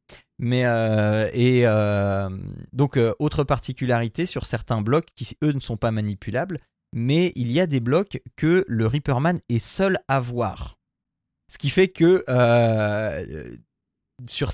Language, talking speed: French, 150 wpm